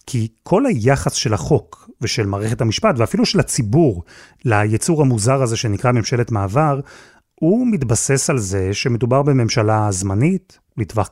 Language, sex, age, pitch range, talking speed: Hebrew, male, 30-49, 110-155 Hz, 135 wpm